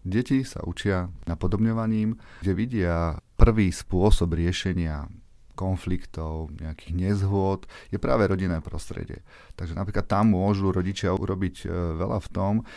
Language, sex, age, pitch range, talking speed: Slovak, male, 30-49, 90-100 Hz, 120 wpm